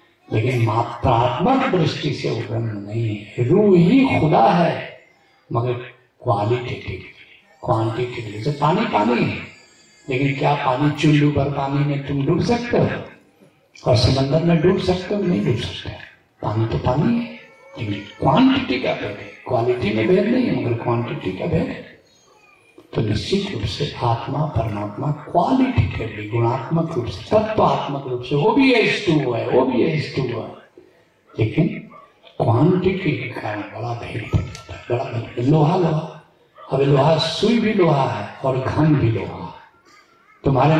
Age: 60-79